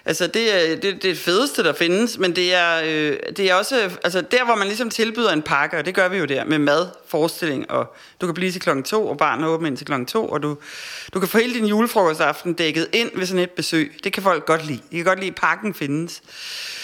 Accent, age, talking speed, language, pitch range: native, 30-49, 260 wpm, Danish, 160-210 Hz